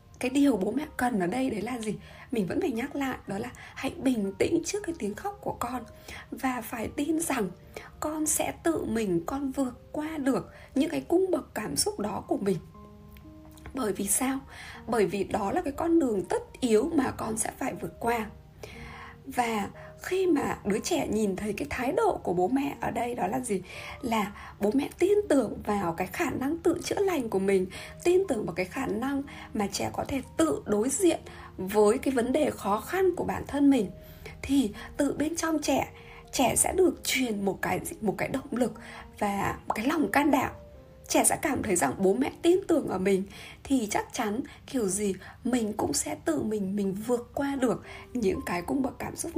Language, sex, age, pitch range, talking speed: Vietnamese, female, 20-39, 205-305 Hz, 210 wpm